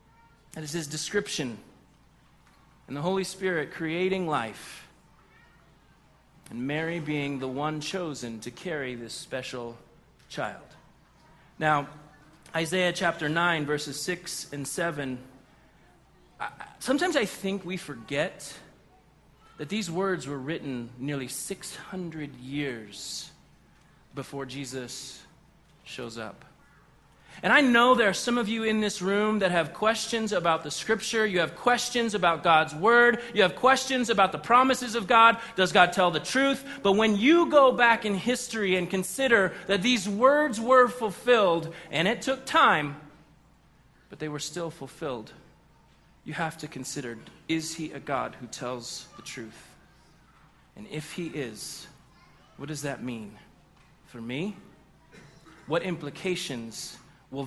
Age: 30-49